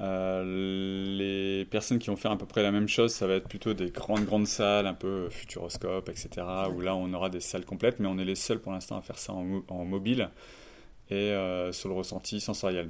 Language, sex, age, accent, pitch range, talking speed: French, male, 30-49, French, 90-105 Hz, 235 wpm